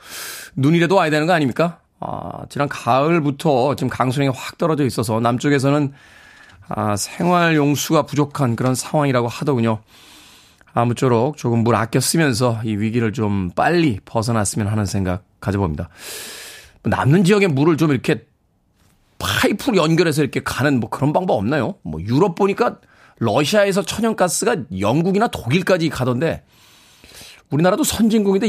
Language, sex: Korean, male